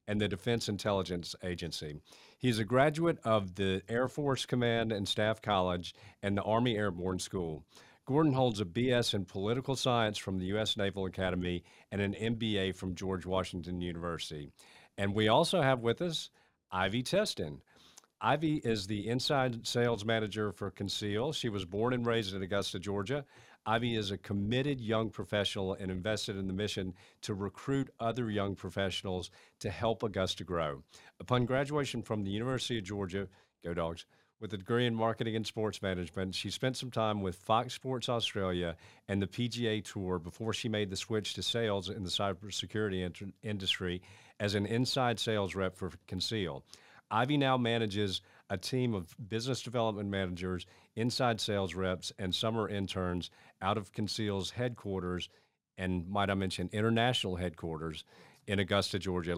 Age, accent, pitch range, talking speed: 50-69, American, 95-115 Hz, 160 wpm